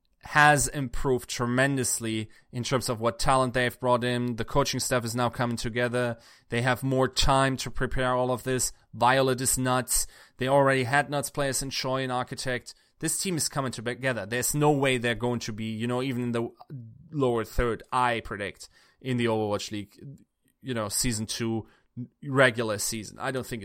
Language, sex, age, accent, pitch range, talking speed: English, male, 20-39, German, 120-135 Hz, 185 wpm